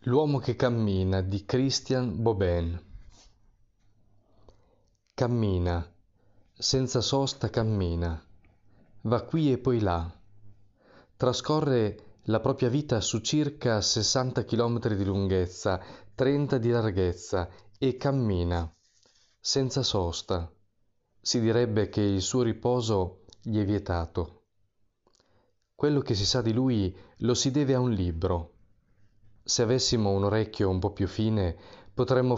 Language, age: Italian, 30-49